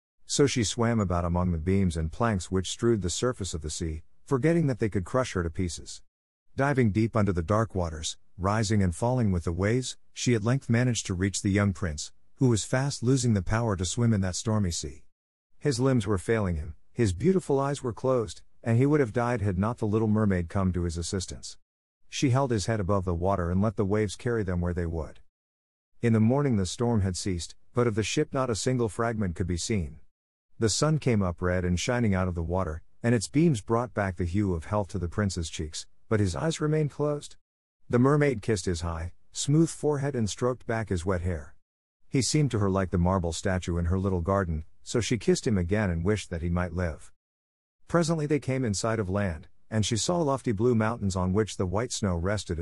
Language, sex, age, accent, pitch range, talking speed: English, male, 50-69, American, 90-120 Hz, 225 wpm